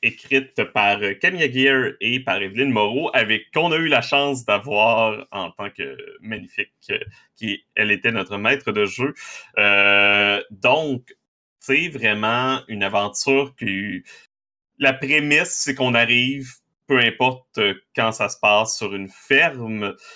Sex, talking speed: male, 140 wpm